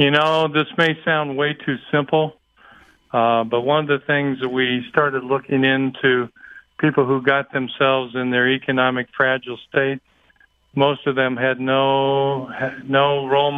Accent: American